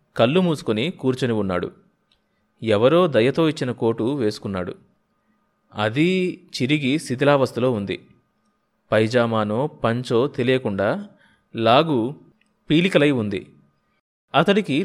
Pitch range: 110-145 Hz